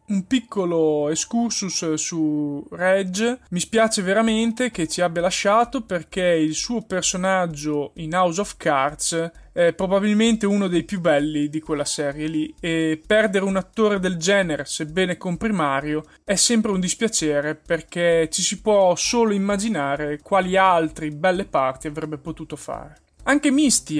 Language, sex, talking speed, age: Italian, male, 145 wpm, 20-39